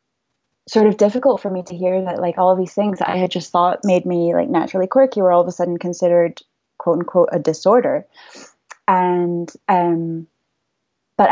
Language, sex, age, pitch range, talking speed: English, female, 20-39, 175-215 Hz, 190 wpm